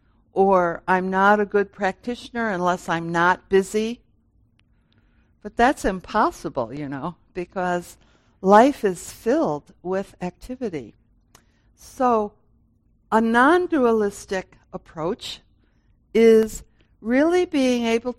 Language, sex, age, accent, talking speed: English, female, 60-79, American, 95 wpm